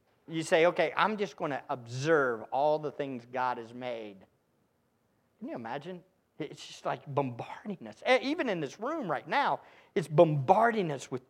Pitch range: 150-230 Hz